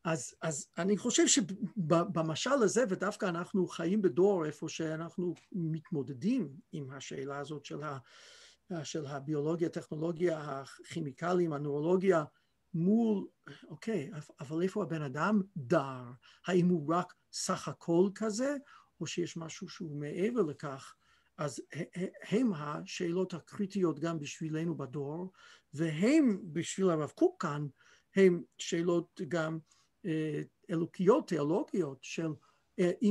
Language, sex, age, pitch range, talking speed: Hebrew, male, 50-69, 155-205 Hz, 110 wpm